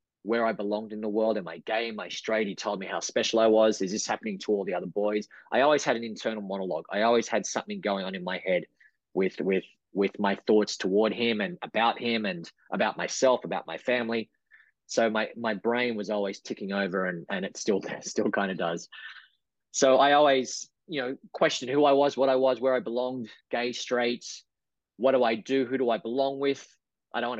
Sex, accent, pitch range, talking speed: male, Australian, 105-125 Hz, 225 wpm